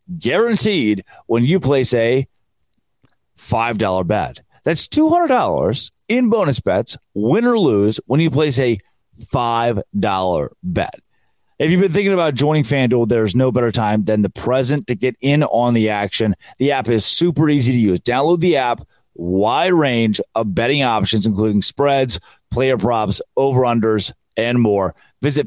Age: 30-49